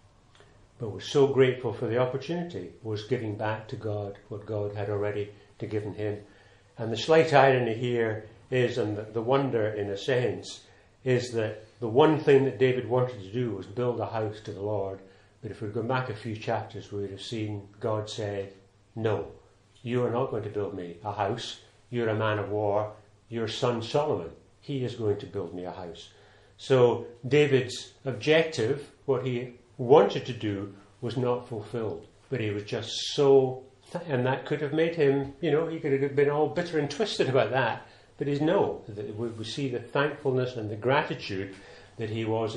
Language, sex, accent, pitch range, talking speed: English, male, British, 100-125 Hz, 190 wpm